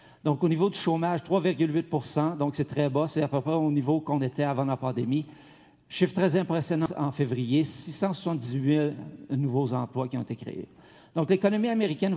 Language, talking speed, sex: French, 180 wpm, male